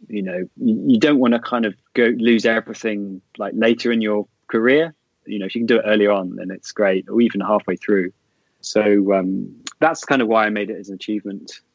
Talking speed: 225 wpm